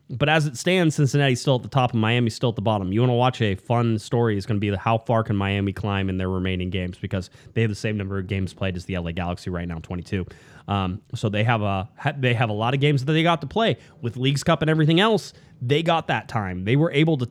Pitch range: 110-145 Hz